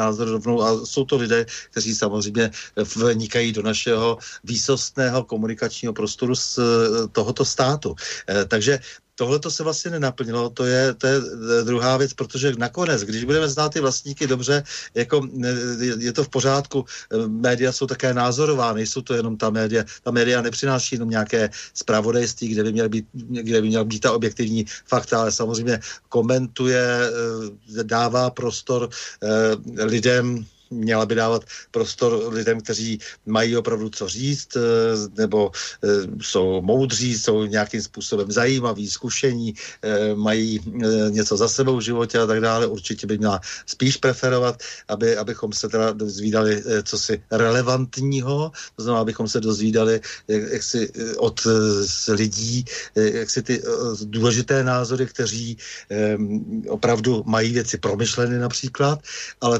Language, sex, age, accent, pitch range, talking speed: Czech, male, 50-69, native, 110-130 Hz, 130 wpm